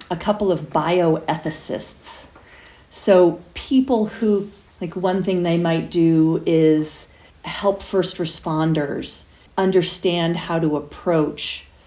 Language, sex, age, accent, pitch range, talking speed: English, female, 40-59, American, 155-190 Hz, 105 wpm